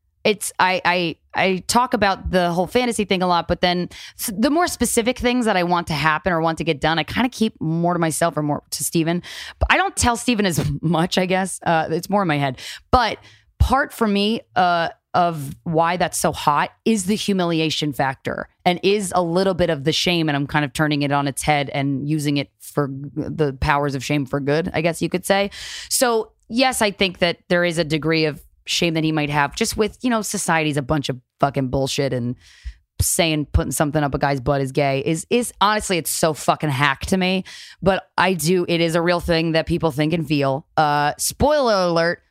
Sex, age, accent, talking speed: female, 20-39, American, 225 wpm